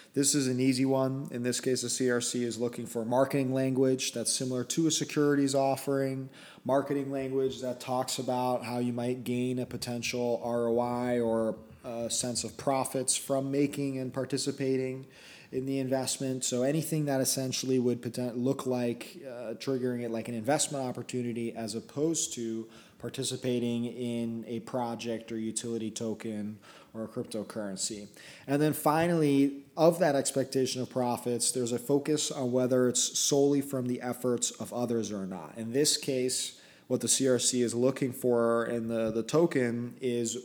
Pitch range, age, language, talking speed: 120-135 Hz, 30-49, English, 160 wpm